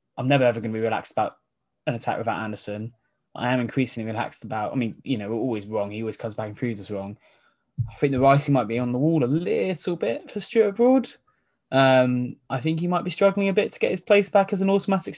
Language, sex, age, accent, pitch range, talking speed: English, male, 10-29, British, 110-145 Hz, 255 wpm